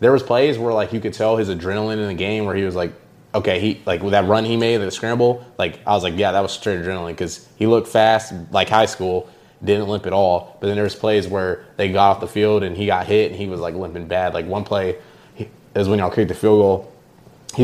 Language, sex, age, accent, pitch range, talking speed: English, male, 20-39, American, 90-105 Hz, 270 wpm